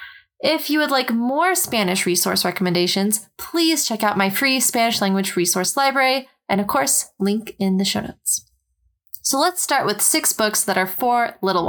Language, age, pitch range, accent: English, 20-39, 190-245 Hz, American